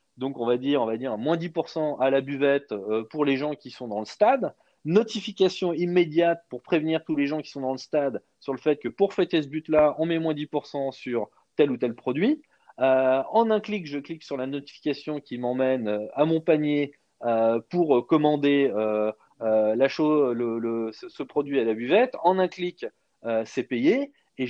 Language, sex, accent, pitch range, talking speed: French, male, French, 135-185 Hz, 195 wpm